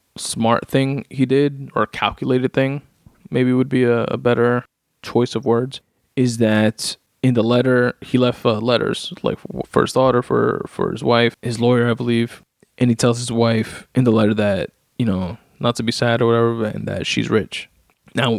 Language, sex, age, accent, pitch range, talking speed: English, male, 20-39, American, 110-125 Hz, 190 wpm